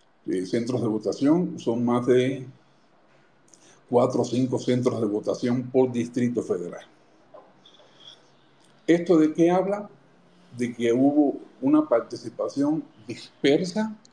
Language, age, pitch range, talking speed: Spanish, 50-69, 120-150 Hz, 110 wpm